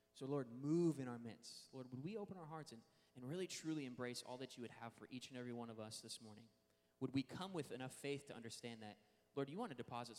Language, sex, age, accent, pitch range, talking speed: English, male, 20-39, American, 120-180 Hz, 265 wpm